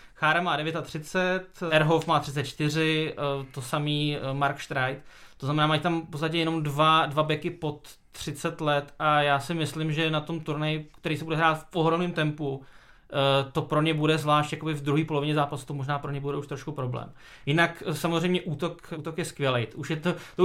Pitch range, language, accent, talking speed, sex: 145-165 Hz, Czech, native, 190 wpm, male